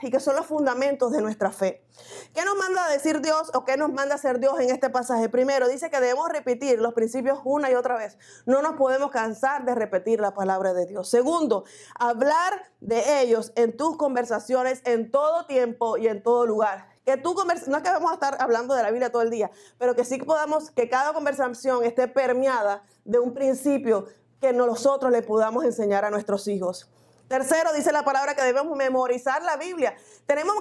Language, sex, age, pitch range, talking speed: English, female, 30-49, 235-290 Hz, 205 wpm